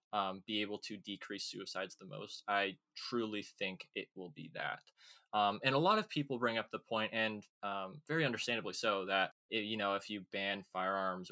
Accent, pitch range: American, 95-125 Hz